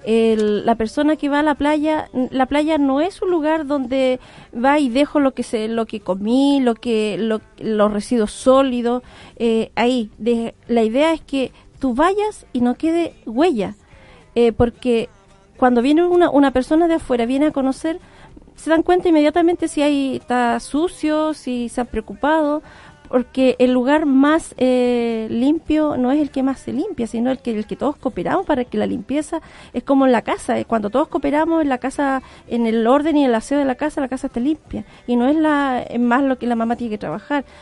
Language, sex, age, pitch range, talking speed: Spanish, female, 40-59, 235-300 Hz, 205 wpm